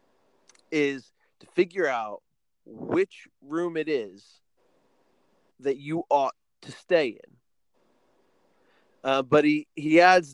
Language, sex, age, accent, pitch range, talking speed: English, male, 30-49, American, 135-175 Hz, 110 wpm